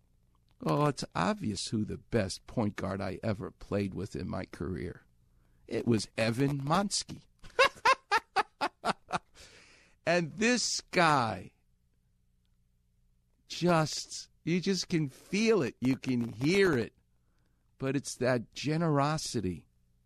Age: 50-69